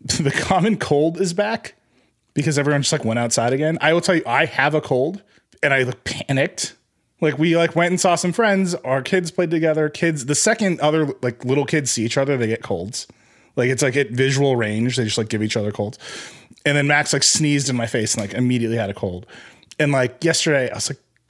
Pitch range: 115-155 Hz